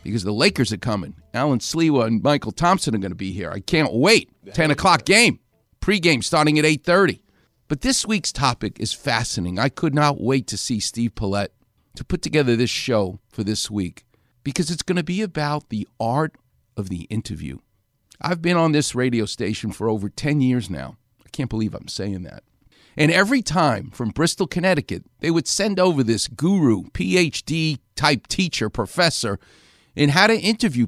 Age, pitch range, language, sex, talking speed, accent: 50-69, 110-165 Hz, English, male, 185 wpm, American